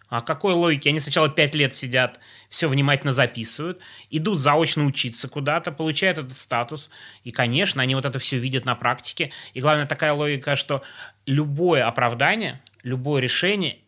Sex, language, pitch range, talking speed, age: male, Russian, 125-155 Hz, 155 wpm, 20-39